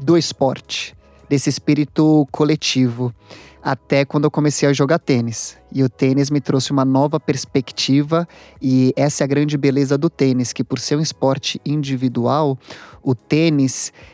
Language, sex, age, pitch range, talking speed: Portuguese, male, 20-39, 135-150 Hz, 155 wpm